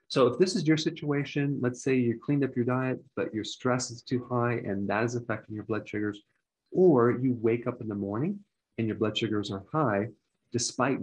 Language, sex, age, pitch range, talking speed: English, male, 40-59, 105-130 Hz, 220 wpm